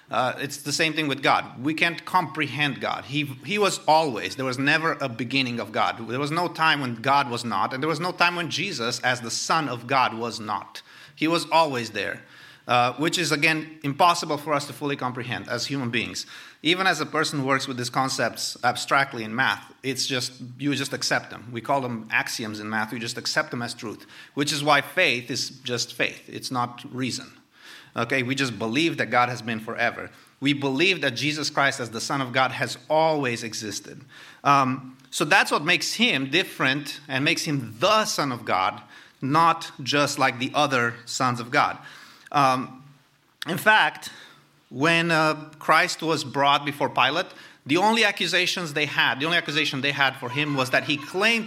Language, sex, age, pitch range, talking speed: English, male, 30-49, 125-155 Hz, 200 wpm